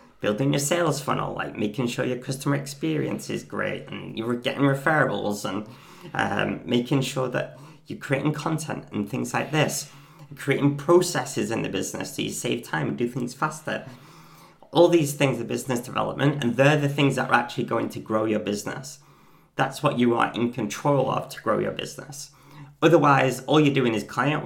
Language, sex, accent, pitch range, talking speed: English, male, British, 120-145 Hz, 185 wpm